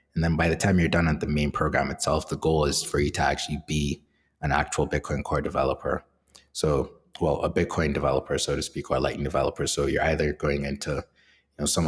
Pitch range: 75-80 Hz